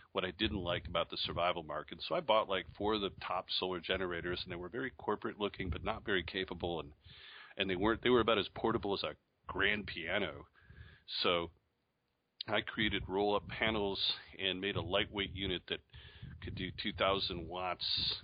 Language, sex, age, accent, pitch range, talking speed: English, male, 40-59, American, 90-105 Hz, 190 wpm